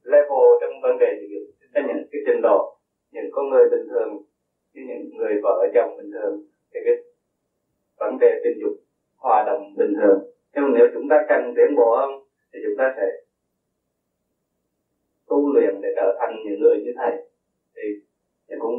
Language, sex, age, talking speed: Vietnamese, male, 20-39, 180 wpm